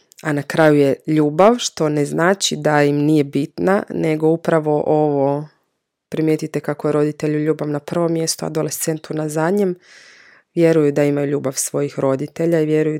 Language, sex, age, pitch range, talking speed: Croatian, female, 20-39, 150-185 Hz, 155 wpm